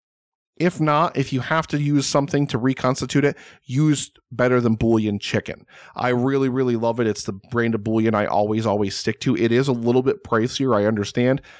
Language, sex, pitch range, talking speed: English, male, 105-135 Hz, 200 wpm